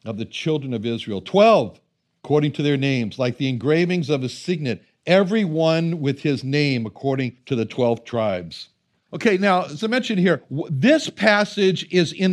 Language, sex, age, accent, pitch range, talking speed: English, male, 60-79, American, 155-220 Hz, 175 wpm